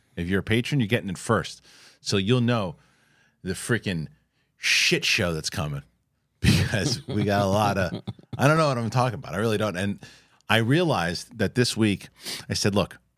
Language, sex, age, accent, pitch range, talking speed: English, male, 40-59, American, 100-130 Hz, 190 wpm